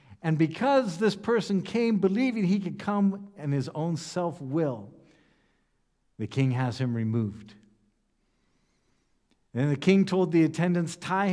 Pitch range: 125-185 Hz